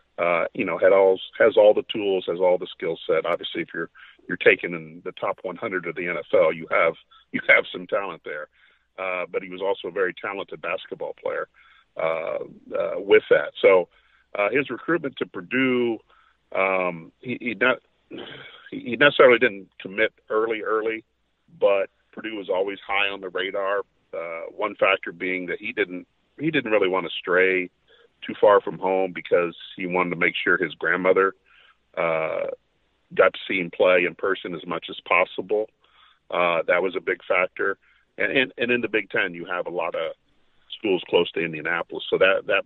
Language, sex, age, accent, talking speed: English, male, 50-69, American, 185 wpm